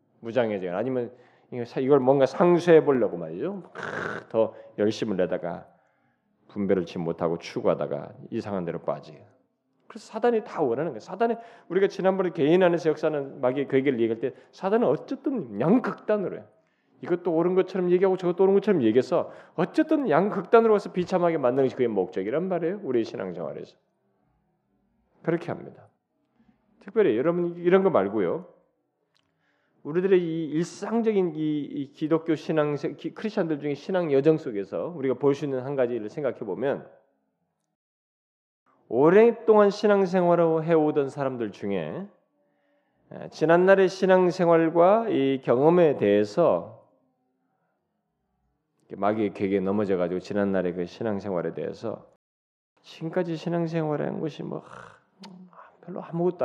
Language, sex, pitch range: Korean, male, 115-185 Hz